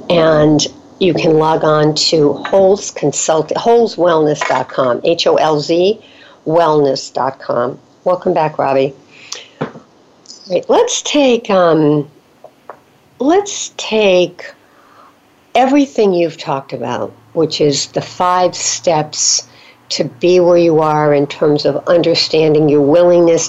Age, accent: 60-79, American